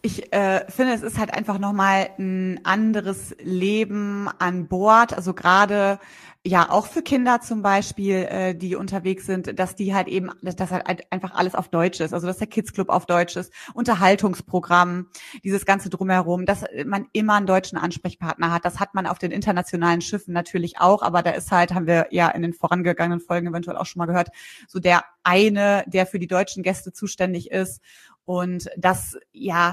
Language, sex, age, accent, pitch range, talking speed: German, female, 30-49, German, 175-205 Hz, 190 wpm